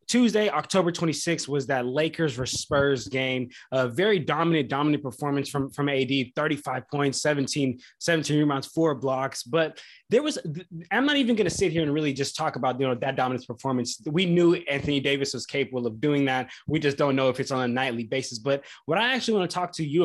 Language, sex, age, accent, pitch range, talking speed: English, male, 20-39, American, 135-165 Hz, 215 wpm